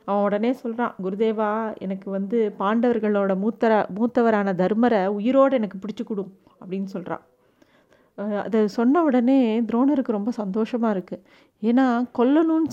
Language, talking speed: Tamil, 120 wpm